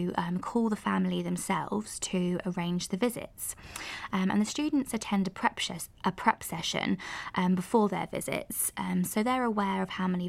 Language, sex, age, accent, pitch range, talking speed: English, female, 20-39, British, 175-200 Hz, 170 wpm